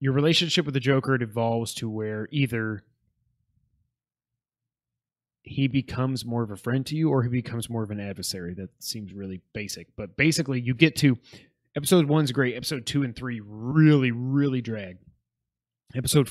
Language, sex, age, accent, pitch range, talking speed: English, male, 30-49, American, 110-140 Hz, 165 wpm